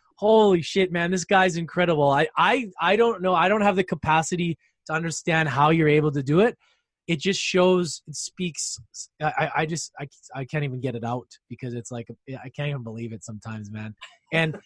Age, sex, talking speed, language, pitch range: 20-39, male, 205 wpm, English, 140-180 Hz